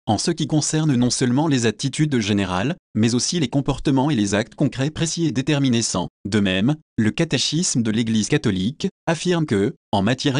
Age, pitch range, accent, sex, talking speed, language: 30-49, 110-150 Hz, French, male, 185 wpm, French